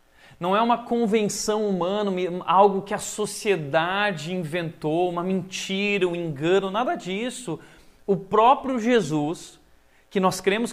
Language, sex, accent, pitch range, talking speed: Portuguese, male, Brazilian, 160-220 Hz, 125 wpm